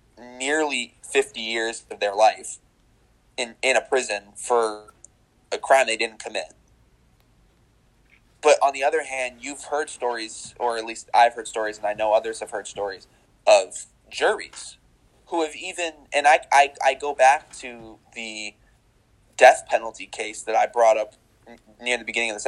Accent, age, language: American, 20-39, English